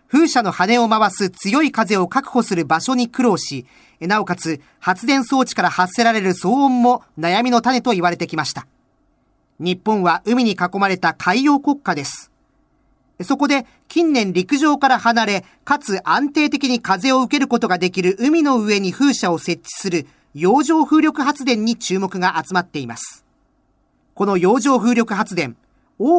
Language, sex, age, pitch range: Japanese, male, 40-59, 175-265 Hz